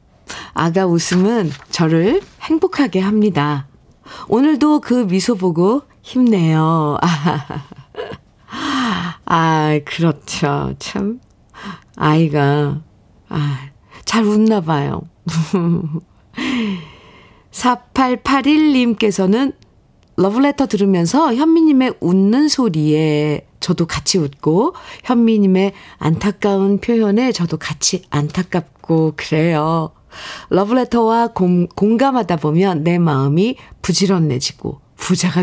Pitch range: 155-230 Hz